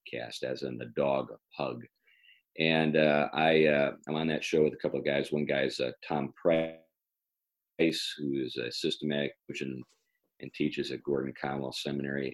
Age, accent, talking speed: 40-59, American, 170 wpm